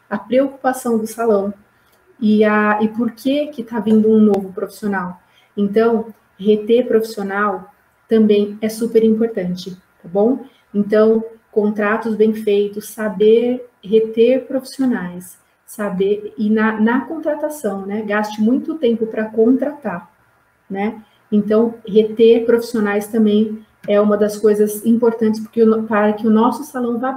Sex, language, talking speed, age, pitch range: female, Portuguese, 130 wpm, 30-49, 205-230 Hz